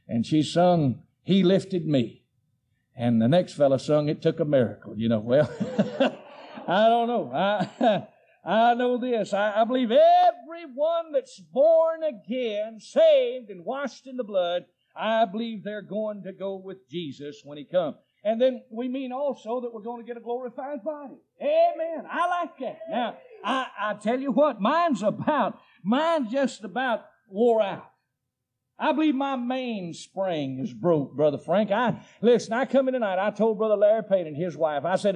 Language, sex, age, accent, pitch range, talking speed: English, male, 50-69, American, 175-245 Hz, 175 wpm